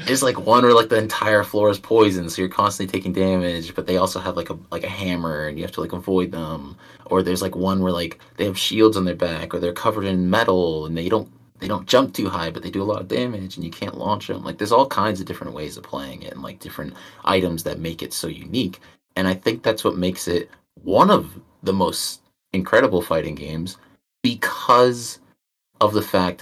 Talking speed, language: 240 wpm, English